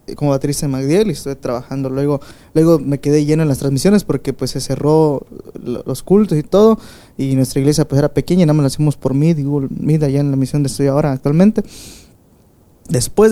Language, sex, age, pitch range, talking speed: Spanish, male, 20-39, 135-160 Hz, 205 wpm